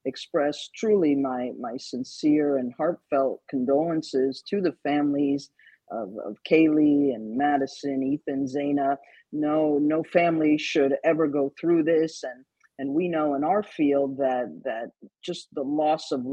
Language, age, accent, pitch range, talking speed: English, 50-69, American, 140-175 Hz, 145 wpm